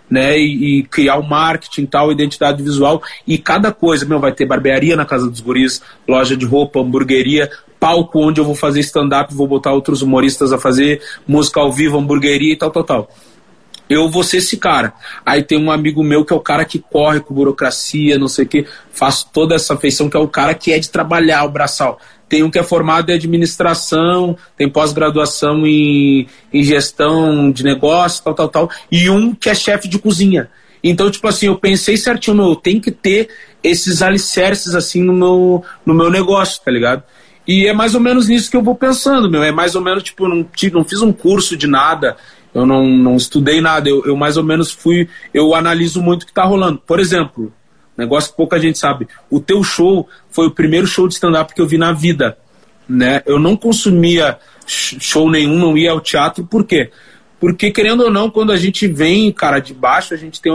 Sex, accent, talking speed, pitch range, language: male, Brazilian, 210 wpm, 145-180 Hz, Portuguese